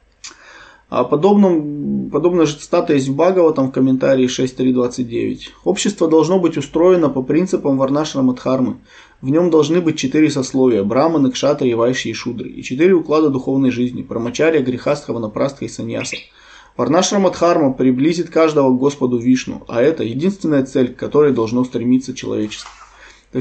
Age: 20-39